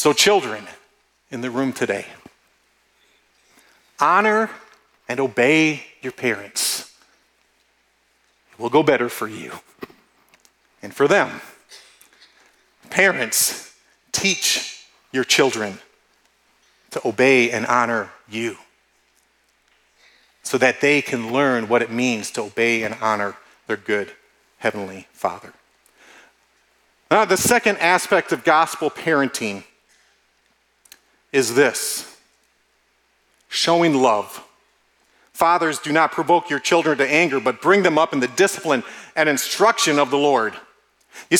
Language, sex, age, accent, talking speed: English, male, 40-59, American, 110 wpm